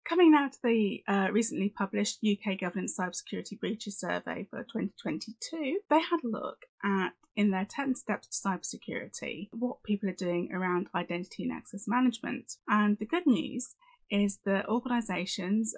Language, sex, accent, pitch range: English, female, British, 190-240 Hz